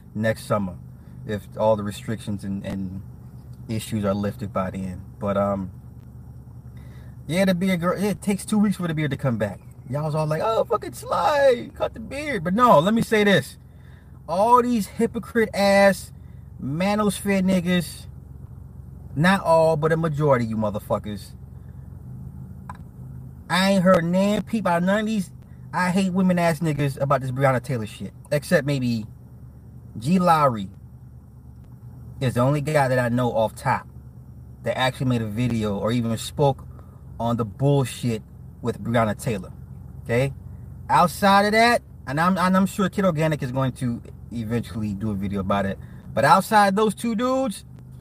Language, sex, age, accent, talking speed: English, male, 30-49, American, 160 wpm